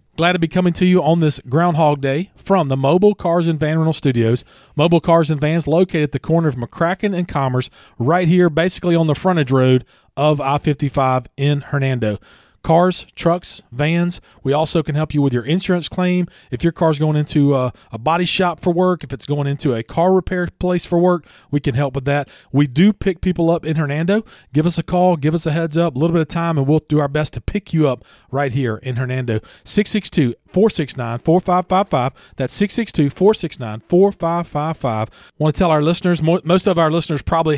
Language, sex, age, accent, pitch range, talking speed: English, male, 40-59, American, 135-170 Hz, 215 wpm